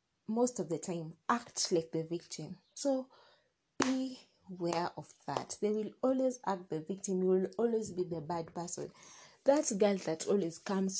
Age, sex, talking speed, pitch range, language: 20-39, female, 170 wpm, 170-210 Hz, English